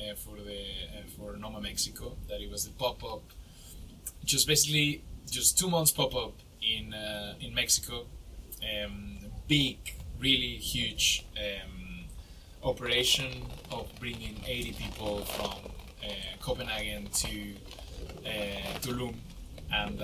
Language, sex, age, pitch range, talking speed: English, male, 20-39, 85-120 Hz, 120 wpm